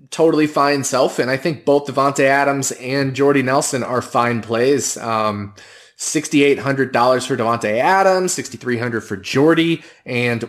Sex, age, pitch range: male, 20-39, 110-140 Hz